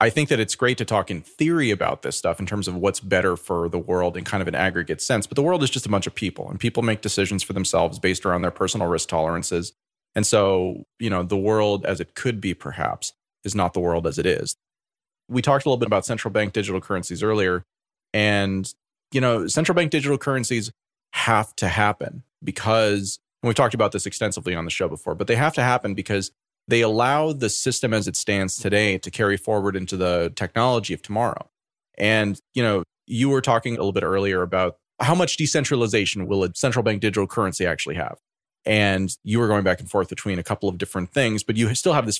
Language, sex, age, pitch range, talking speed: English, male, 30-49, 95-125 Hz, 225 wpm